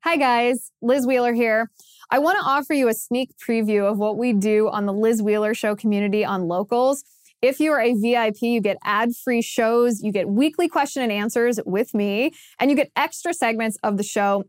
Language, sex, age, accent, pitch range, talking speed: English, female, 20-39, American, 205-245 Hz, 205 wpm